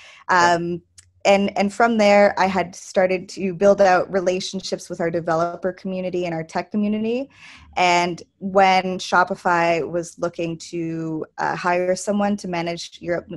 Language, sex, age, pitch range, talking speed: English, female, 20-39, 165-185 Hz, 145 wpm